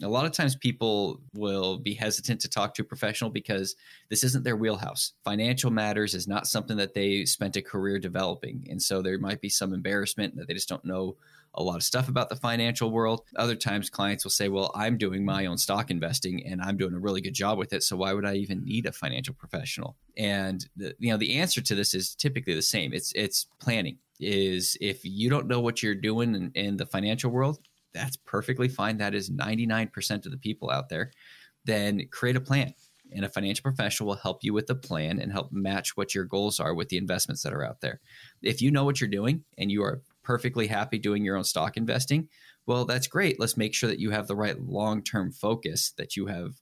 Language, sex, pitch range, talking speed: English, male, 100-120 Hz, 230 wpm